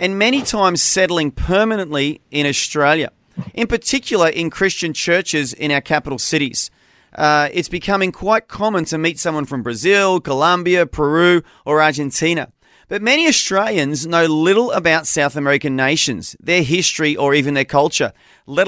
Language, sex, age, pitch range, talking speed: English, male, 30-49, 135-180 Hz, 150 wpm